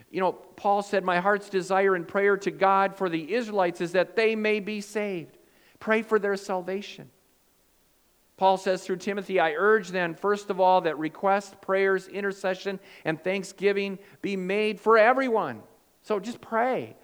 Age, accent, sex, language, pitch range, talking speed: 50-69, American, male, English, 145-200 Hz, 165 wpm